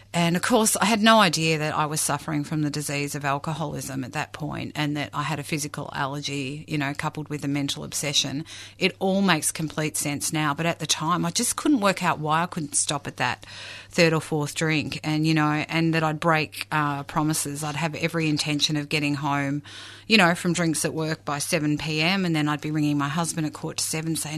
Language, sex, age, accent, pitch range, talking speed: English, female, 30-49, Australian, 145-160 Hz, 230 wpm